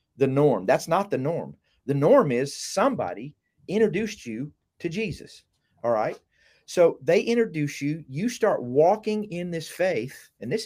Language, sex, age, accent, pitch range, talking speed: English, male, 40-59, American, 145-195 Hz, 160 wpm